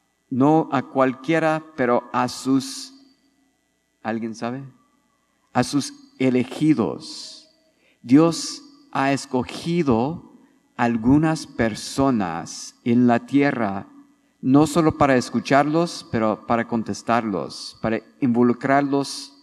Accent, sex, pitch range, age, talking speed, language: Mexican, male, 120-165 Hz, 50-69, 85 wpm, English